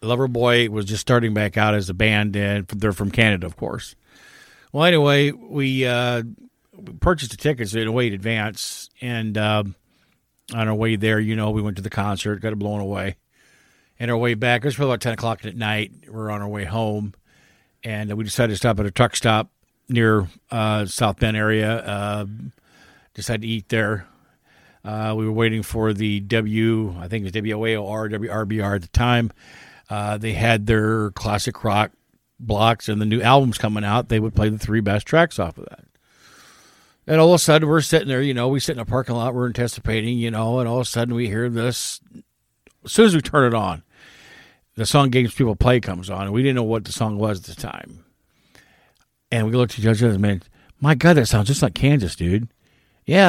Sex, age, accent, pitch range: male, 50-69, American, 105-125 Hz